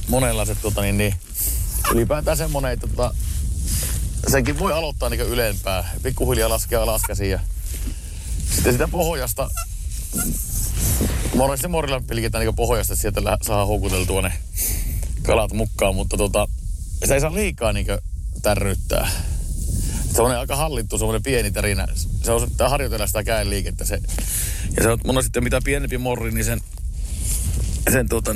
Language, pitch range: Finnish, 85-115 Hz